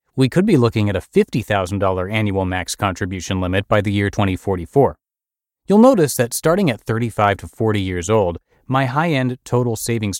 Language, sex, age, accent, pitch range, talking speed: English, male, 30-49, American, 95-130 Hz, 170 wpm